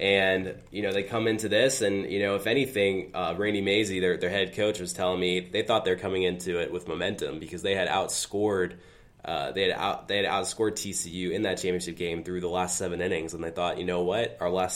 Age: 20-39